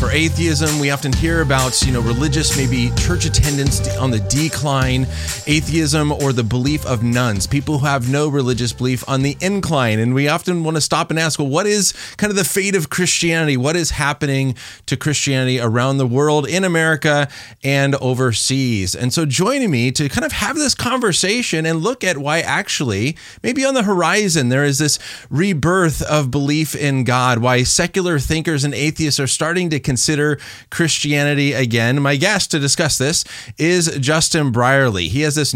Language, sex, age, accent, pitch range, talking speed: English, male, 30-49, American, 125-165 Hz, 180 wpm